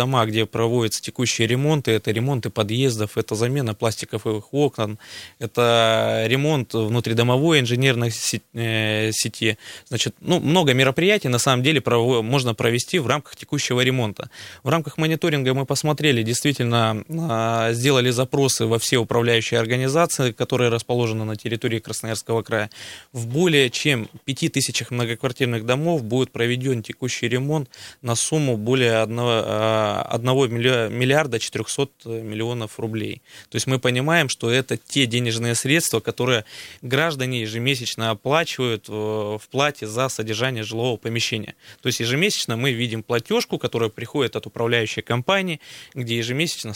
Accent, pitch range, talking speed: native, 115-135 Hz, 125 wpm